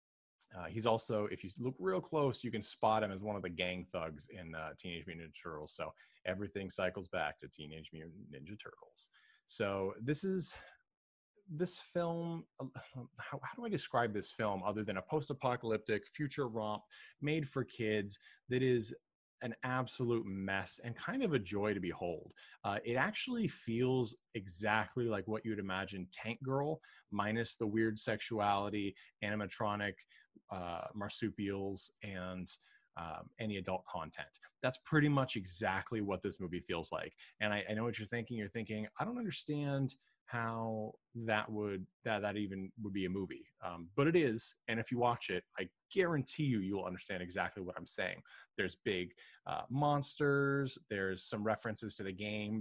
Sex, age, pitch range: male, 20-39, 95-125 Hz